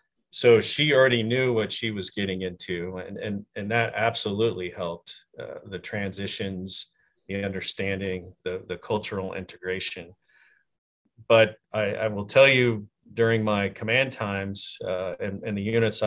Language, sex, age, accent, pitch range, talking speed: English, male, 40-59, American, 95-115 Hz, 140 wpm